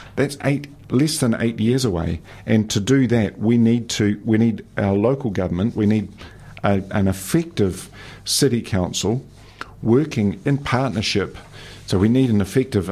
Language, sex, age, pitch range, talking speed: English, male, 50-69, 95-120 Hz, 160 wpm